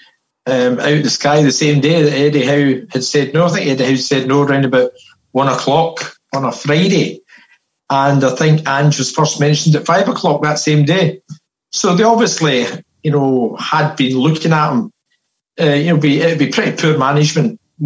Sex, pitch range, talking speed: male, 140-170 Hz, 205 wpm